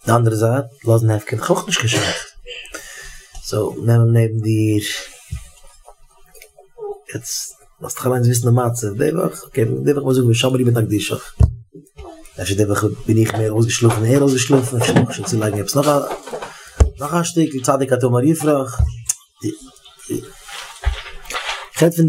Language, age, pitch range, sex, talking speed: English, 30-49, 110-145 Hz, male, 85 wpm